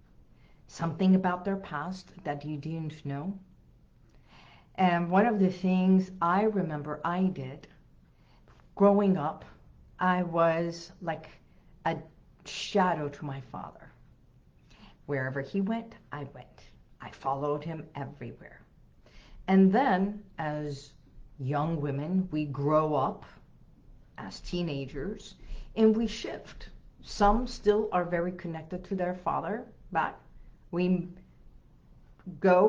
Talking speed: 110 wpm